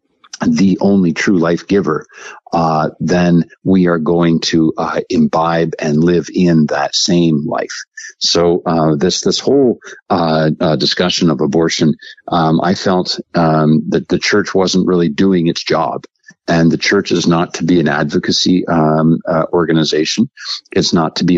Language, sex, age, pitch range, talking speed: English, male, 50-69, 80-90 Hz, 160 wpm